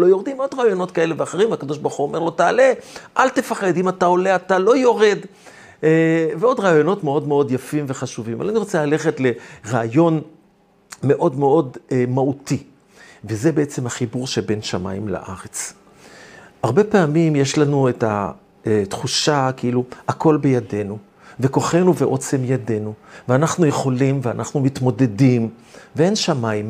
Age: 50-69